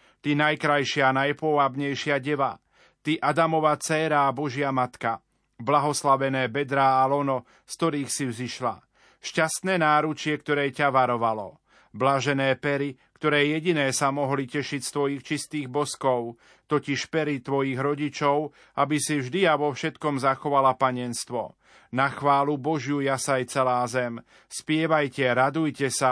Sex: male